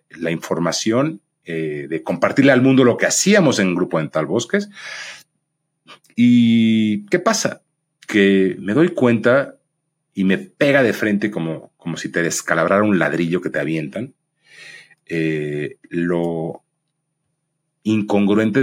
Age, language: 40-59, Spanish